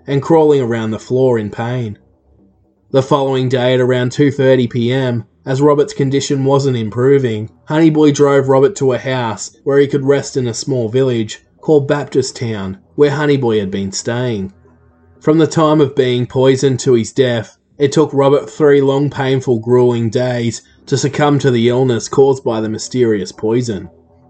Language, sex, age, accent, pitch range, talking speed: English, male, 20-39, Australian, 115-140 Hz, 170 wpm